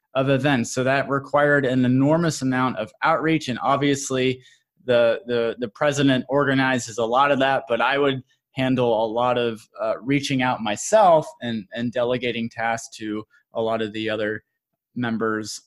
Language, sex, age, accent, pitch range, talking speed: English, male, 20-39, American, 115-150 Hz, 165 wpm